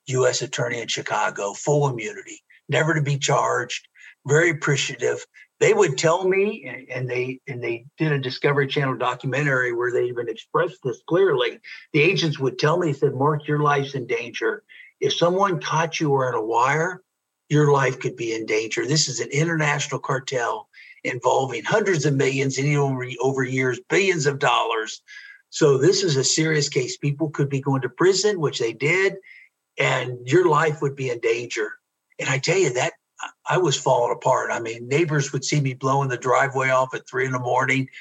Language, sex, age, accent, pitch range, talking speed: English, male, 50-69, American, 130-170 Hz, 190 wpm